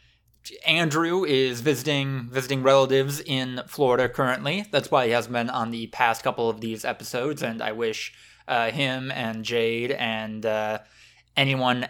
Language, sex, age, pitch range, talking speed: English, male, 20-39, 115-150 Hz, 150 wpm